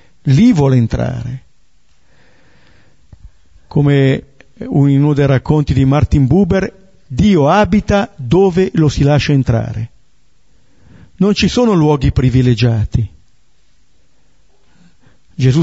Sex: male